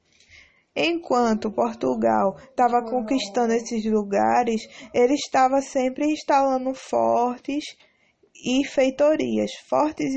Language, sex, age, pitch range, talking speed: English, female, 20-39, 215-260 Hz, 85 wpm